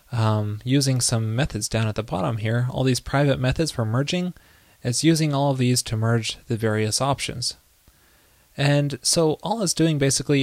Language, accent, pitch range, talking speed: English, American, 115-145 Hz, 180 wpm